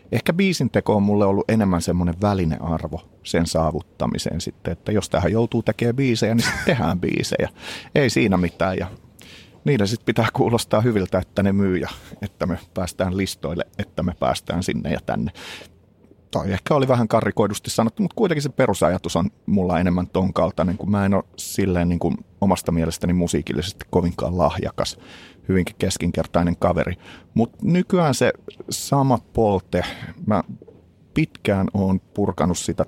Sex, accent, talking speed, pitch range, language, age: male, native, 150 wpm, 90-115 Hz, Finnish, 30-49